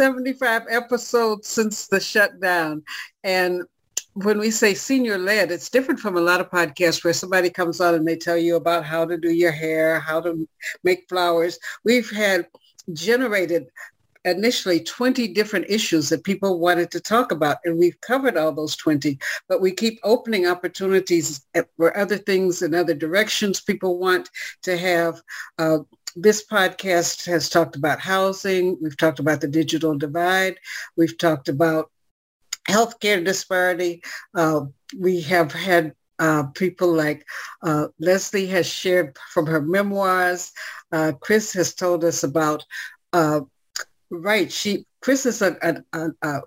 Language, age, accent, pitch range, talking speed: English, 60-79, American, 165-195 Hz, 150 wpm